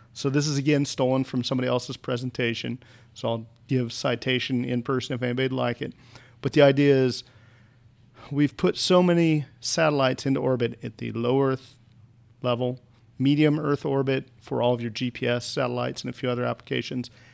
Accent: American